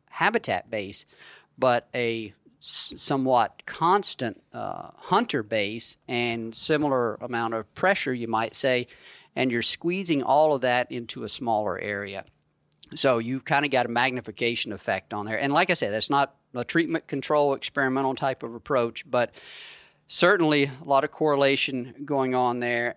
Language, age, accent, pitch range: English, 40-59, American, 110-135 Hz